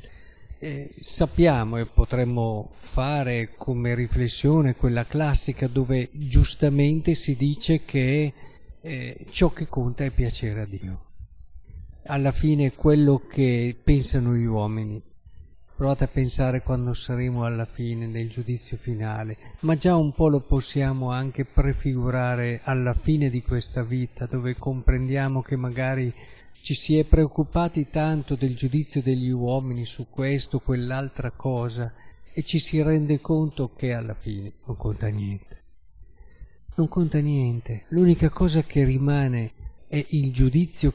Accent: native